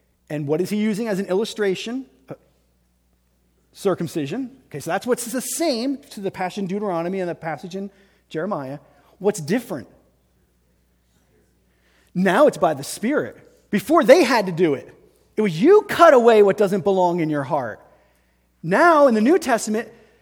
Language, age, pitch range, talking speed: English, 30-49, 175-265 Hz, 160 wpm